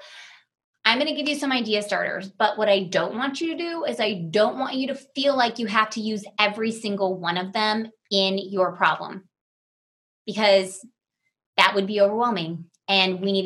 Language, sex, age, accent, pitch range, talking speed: English, female, 20-39, American, 190-255 Hz, 190 wpm